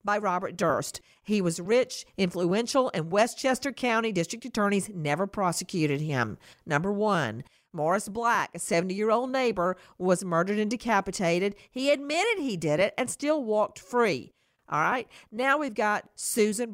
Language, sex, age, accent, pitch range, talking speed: English, female, 50-69, American, 175-240 Hz, 145 wpm